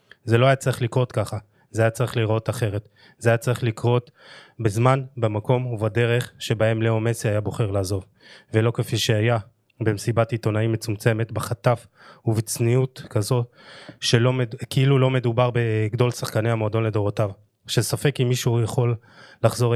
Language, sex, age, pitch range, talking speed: Hebrew, male, 20-39, 110-125 Hz, 140 wpm